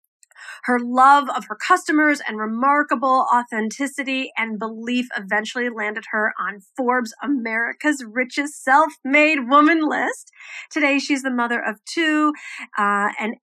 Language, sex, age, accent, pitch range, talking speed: English, female, 40-59, American, 220-285 Hz, 125 wpm